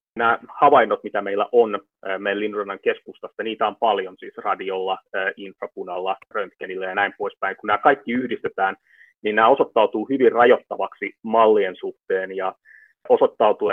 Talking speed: 135 wpm